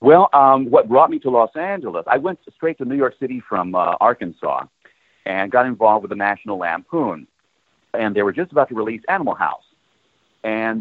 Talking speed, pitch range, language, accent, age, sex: 200 wpm, 105-145 Hz, English, American, 50-69, male